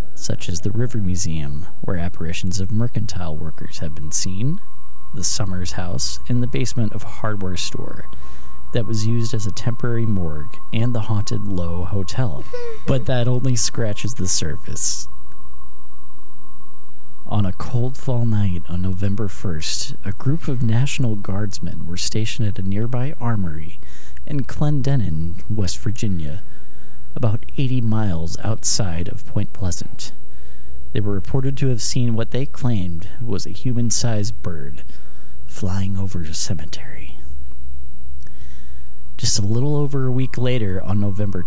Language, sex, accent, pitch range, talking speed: English, male, American, 75-115 Hz, 140 wpm